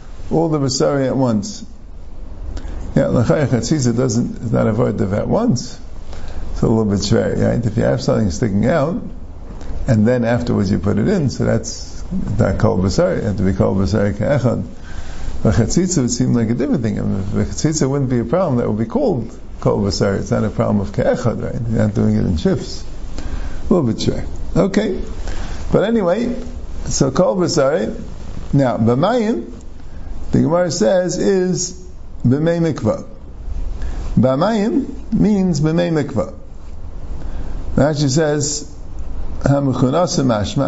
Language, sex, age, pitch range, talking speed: English, male, 50-69, 85-140 Hz, 160 wpm